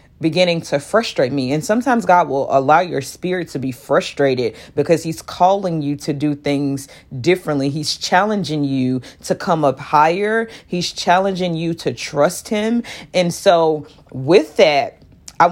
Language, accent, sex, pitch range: English, American, female, 140-175 Hz